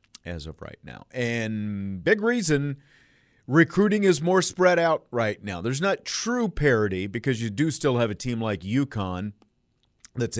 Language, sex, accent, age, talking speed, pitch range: English, male, American, 50-69, 160 wpm, 95-125 Hz